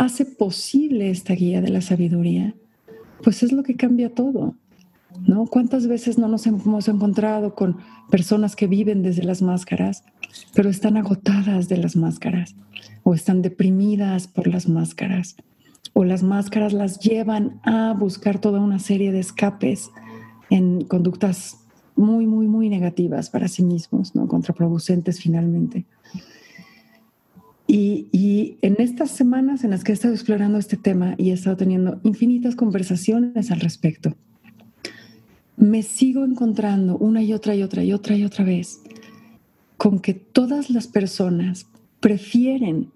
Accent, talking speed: Mexican, 145 wpm